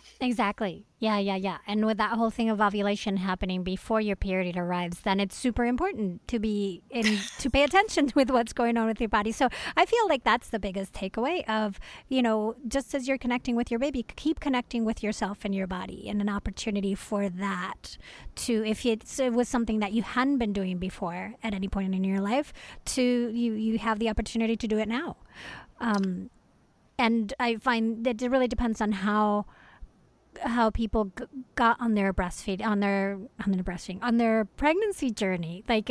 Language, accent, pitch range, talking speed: English, American, 200-245 Hz, 195 wpm